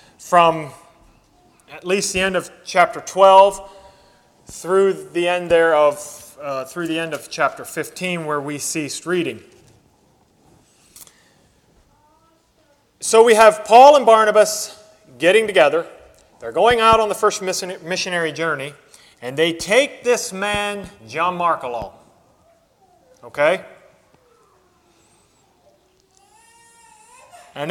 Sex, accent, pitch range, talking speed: male, American, 170-230 Hz, 105 wpm